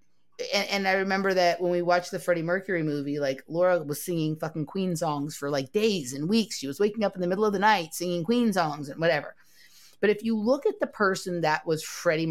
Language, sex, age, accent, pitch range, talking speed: English, female, 30-49, American, 150-185 Hz, 240 wpm